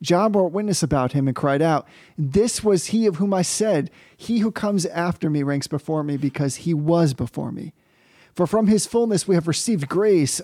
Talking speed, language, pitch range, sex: 205 wpm, English, 155-205 Hz, male